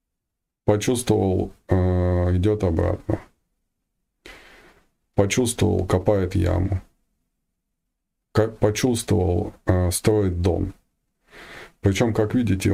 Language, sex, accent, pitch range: Russian, male, native, 85-105 Hz